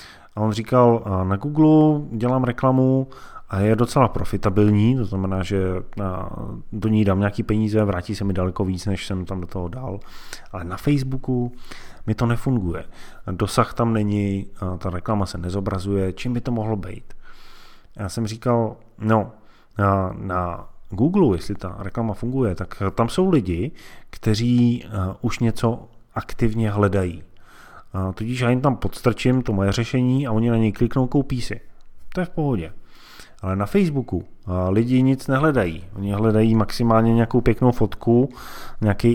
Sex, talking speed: male, 150 wpm